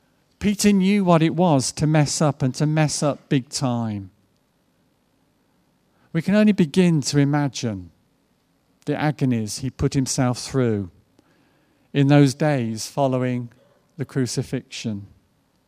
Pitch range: 115-150 Hz